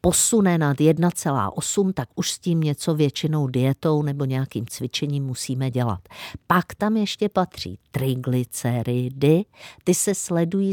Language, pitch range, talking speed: Czech, 130-175 Hz, 130 wpm